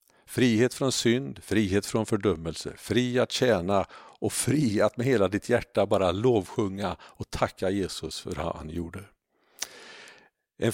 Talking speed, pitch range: 145 wpm, 95-110 Hz